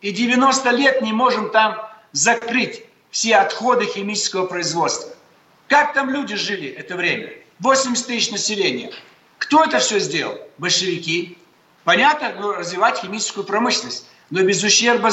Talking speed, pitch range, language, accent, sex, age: 125 wpm, 190-245 Hz, Russian, native, male, 60-79